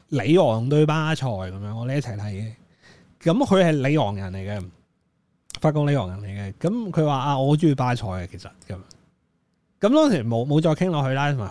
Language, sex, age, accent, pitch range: Chinese, male, 20-39, native, 110-155 Hz